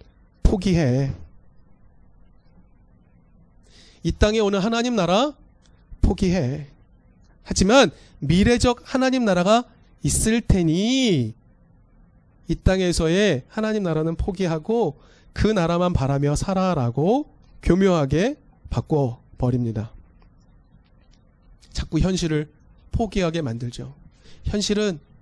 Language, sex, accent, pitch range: Korean, male, native, 130-215 Hz